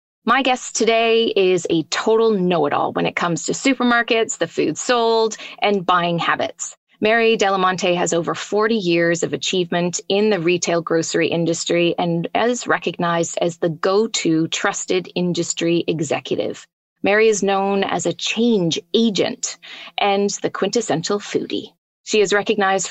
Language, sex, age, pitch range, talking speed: English, female, 30-49, 175-225 Hz, 150 wpm